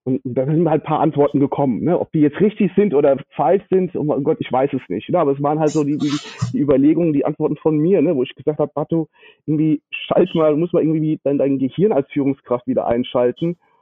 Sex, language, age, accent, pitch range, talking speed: male, German, 40-59, German, 135-160 Hz, 250 wpm